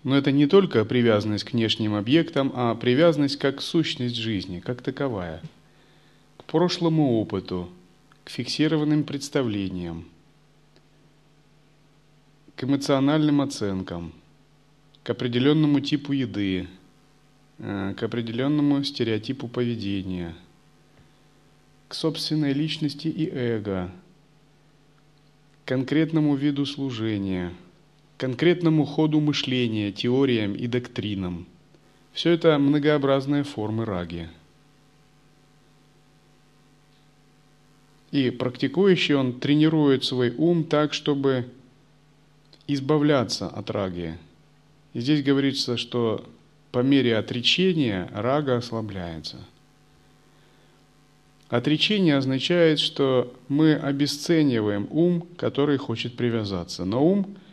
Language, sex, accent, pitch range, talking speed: Russian, male, native, 120-150 Hz, 85 wpm